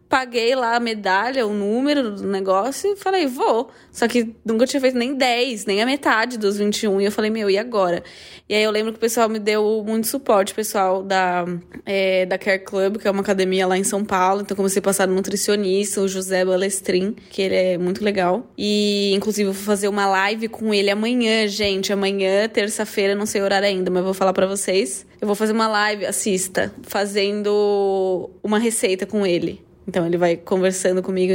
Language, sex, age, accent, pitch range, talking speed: Portuguese, female, 20-39, Brazilian, 190-220 Hz, 205 wpm